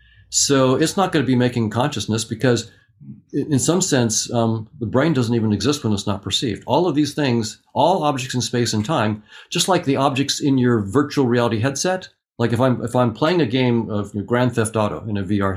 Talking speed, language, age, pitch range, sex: 215 wpm, English, 50-69, 110-140 Hz, male